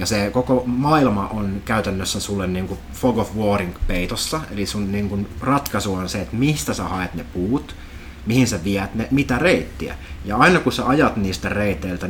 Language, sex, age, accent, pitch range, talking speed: Finnish, male, 30-49, native, 95-120 Hz, 185 wpm